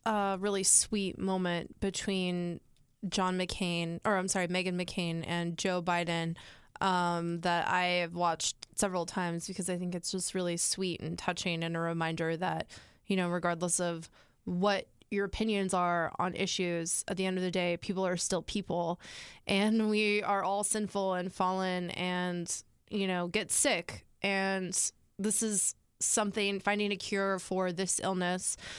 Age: 20-39